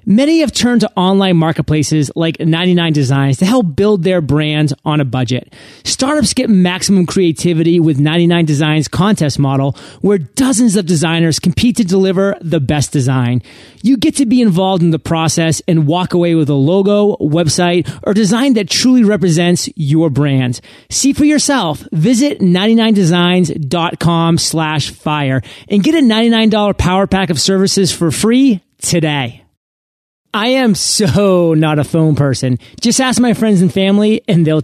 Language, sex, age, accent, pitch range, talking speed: English, male, 30-49, American, 155-210 Hz, 155 wpm